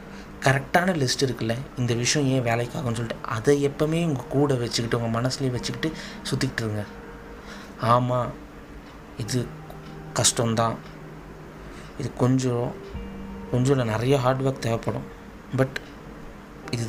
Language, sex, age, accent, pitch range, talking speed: Tamil, male, 20-39, native, 95-135 Hz, 100 wpm